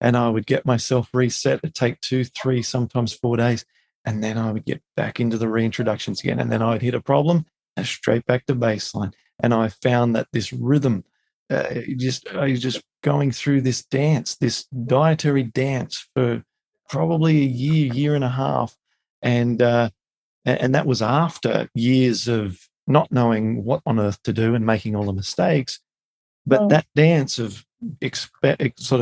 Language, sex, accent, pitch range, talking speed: English, male, Australian, 115-145 Hz, 180 wpm